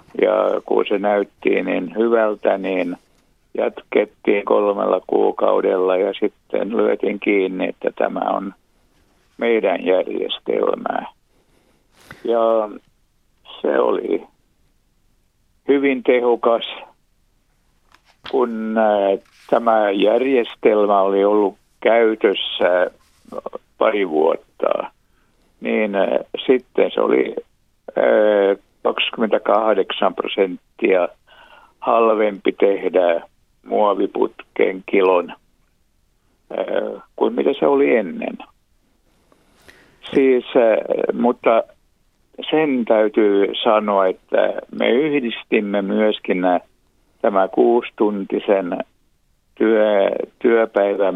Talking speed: 70 wpm